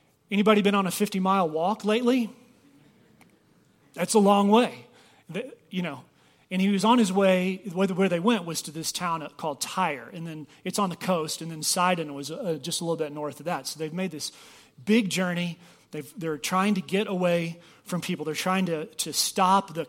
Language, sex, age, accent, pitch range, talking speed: English, male, 30-49, American, 155-195 Hz, 195 wpm